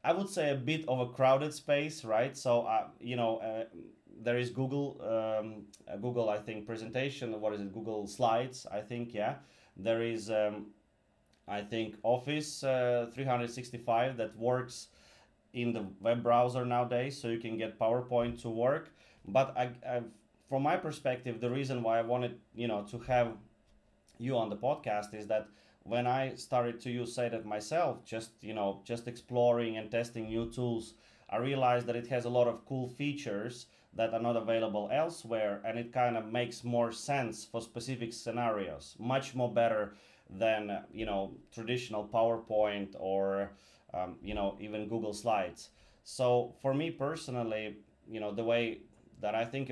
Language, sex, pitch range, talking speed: English, male, 110-125 Hz, 170 wpm